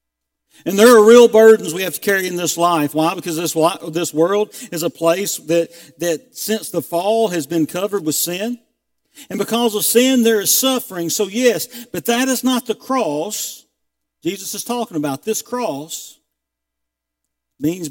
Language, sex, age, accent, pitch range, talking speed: English, male, 50-69, American, 160-230 Hz, 175 wpm